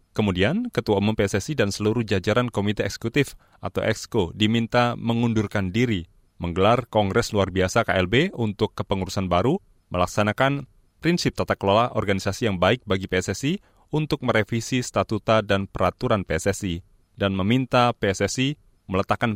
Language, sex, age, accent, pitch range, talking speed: Indonesian, male, 30-49, native, 100-120 Hz, 125 wpm